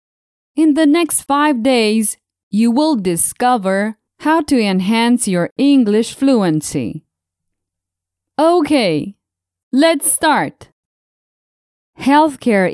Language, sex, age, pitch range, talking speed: English, female, 20-39, 195-270 Hz, 85 wpm